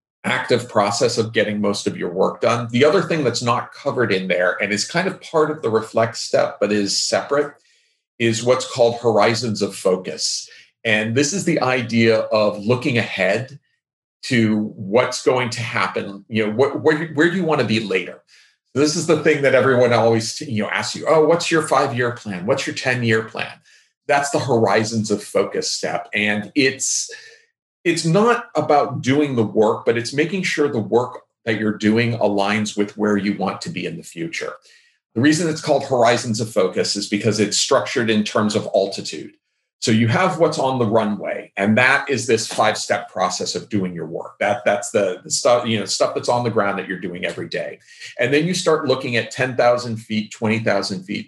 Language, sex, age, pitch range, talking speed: English, male, 40-59, 105-145 Hz, 200 wpm